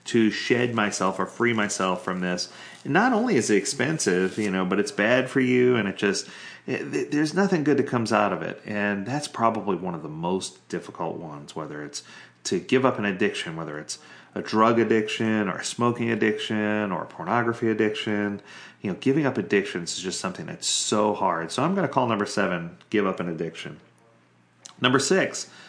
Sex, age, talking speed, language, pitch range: male, 30-49, 200 wpm, English, 100-140 Hz